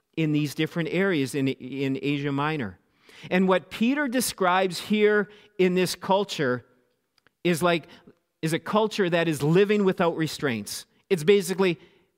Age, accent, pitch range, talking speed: 50-69, American, 140-180 Hz, 140 wpm